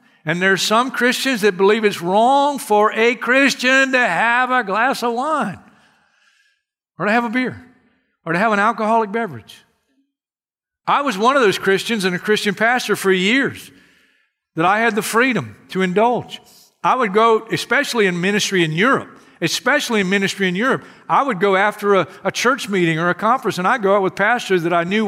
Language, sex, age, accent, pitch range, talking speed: English, male, 60-79, American, 185-245 Hz, 190 wpm